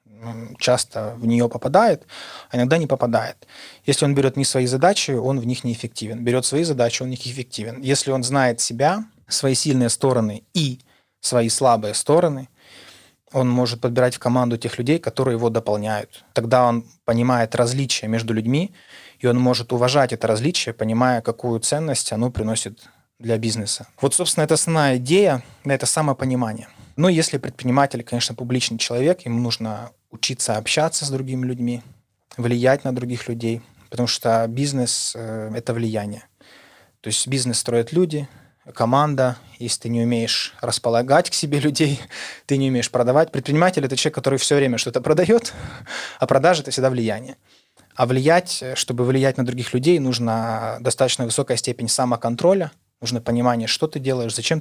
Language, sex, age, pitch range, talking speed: Ukrainian, male, 20-39, 115-135 Hz, 160 wpm